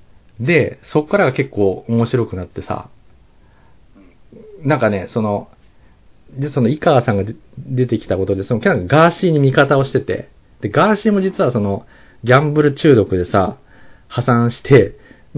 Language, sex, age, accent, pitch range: Japanese, male, 40-59, native, 100-145 Hz